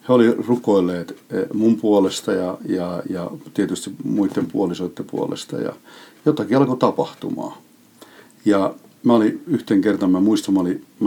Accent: native